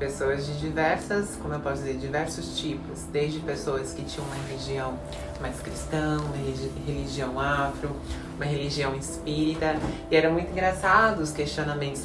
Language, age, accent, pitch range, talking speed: Portuguese, 20-39, Brazilian, 150-190 Hz, 145 wpm